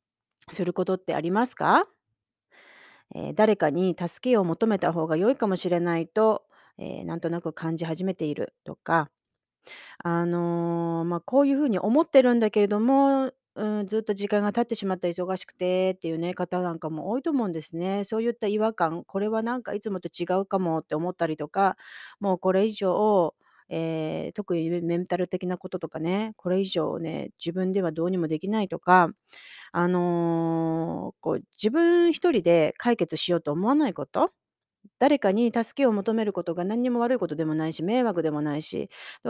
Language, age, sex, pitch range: Japanese, 30-49, female, 170-230 Hz